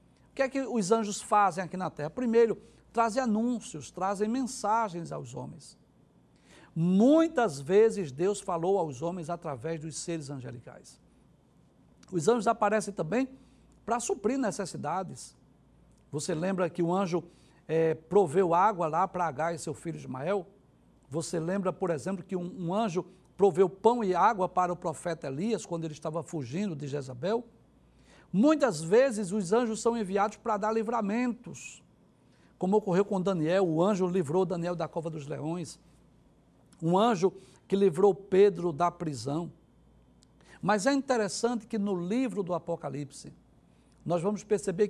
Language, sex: Portuguese, male